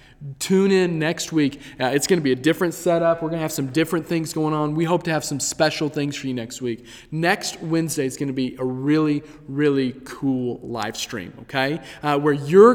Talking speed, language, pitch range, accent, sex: 225 wpm, English, 140-180 Hz, American, male